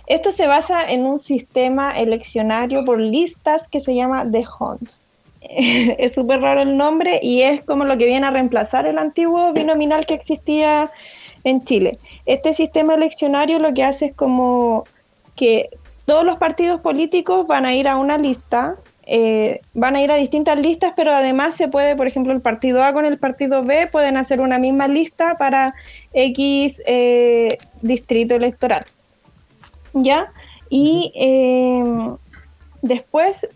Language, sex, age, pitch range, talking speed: Spanish, female, 10-29, 255-315 Hz, 155 wpm